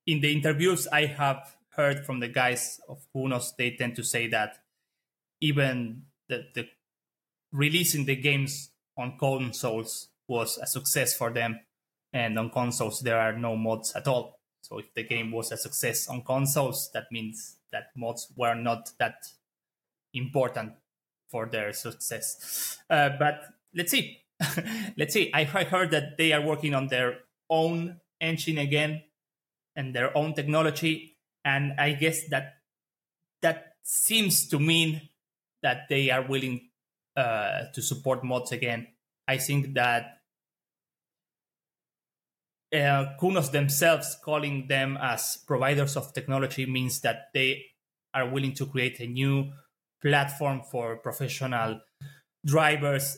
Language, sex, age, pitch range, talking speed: Portuguese, male, 20-39, 125-150 Hz, 135 wpm